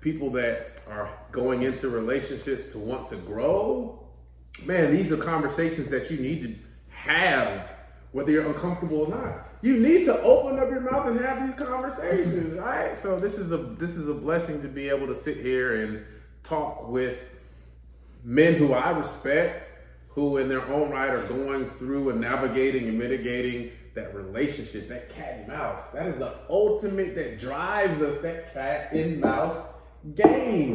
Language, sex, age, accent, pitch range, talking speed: English, male, 30-49, American, 130-180 Hz, 165 wpm